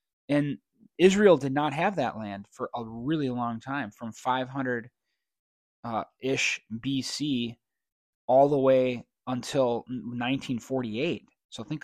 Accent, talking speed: American, 110 wpm